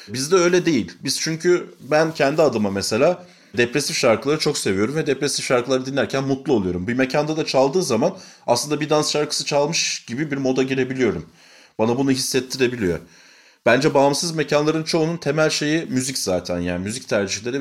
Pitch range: 105-150 Hz